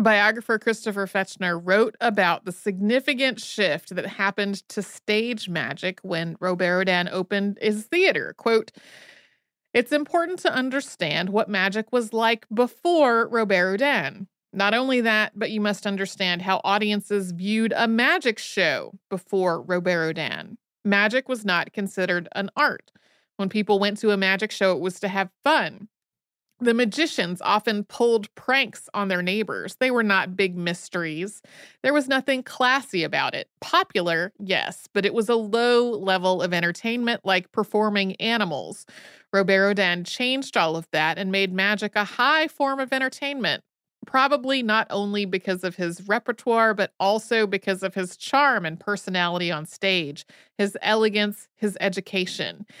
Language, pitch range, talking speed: English, 190-235 Hz, 150 wpm